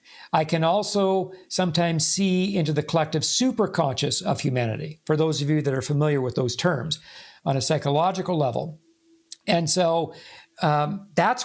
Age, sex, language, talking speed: 50-69, male, English, 150 wpm